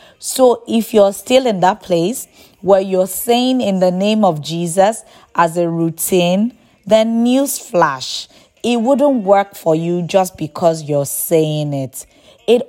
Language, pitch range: English, 165-225 Hz